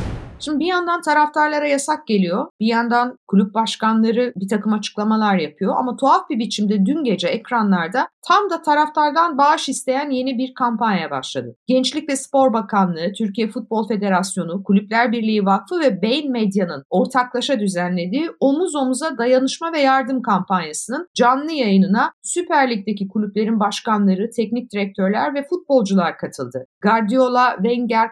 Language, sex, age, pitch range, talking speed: Turkish, female, 50-69, 195-270 Hz, 135 wpm